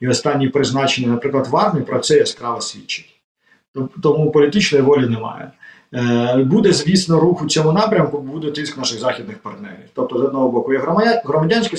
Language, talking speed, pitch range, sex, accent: Ukrainian, 160 wpm, 125-170 Hz, male, native